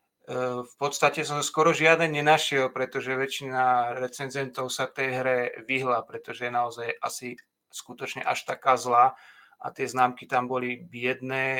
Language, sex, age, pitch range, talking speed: Slovak, male, 30-49, 125-135 Hz, 140 wpm